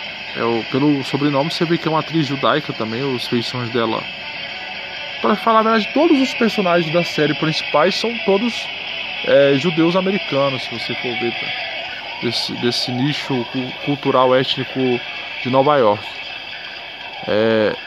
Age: 20-39